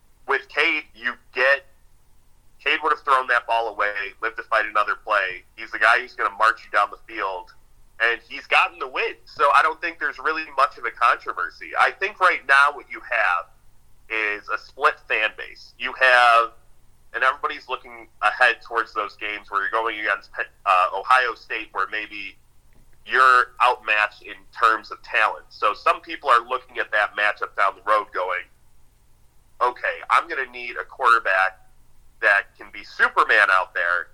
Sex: male